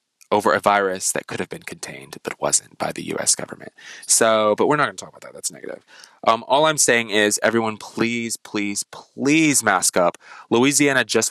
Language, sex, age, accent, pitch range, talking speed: English, male, 20-39, American, 95-120 Hz, 195 wpm